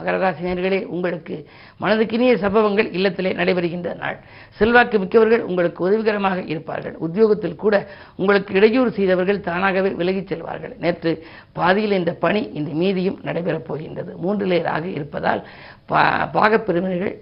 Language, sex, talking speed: Tamil, female, 110 wpm